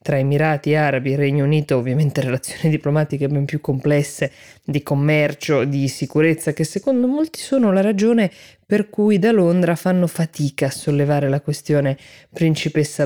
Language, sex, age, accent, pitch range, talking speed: Italian, female, 20-39, native, 135-165 Hz, 150 wpm